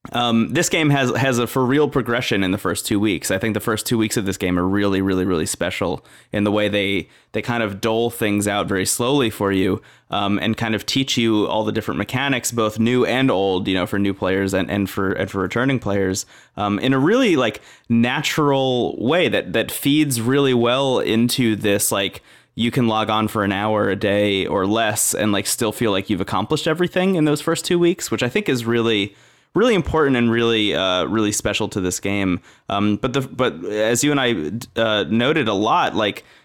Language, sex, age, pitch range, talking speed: English, male, 20-39, 100-125 Hz, 220 wpm